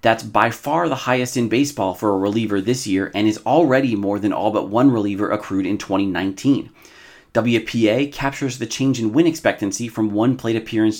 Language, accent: English, American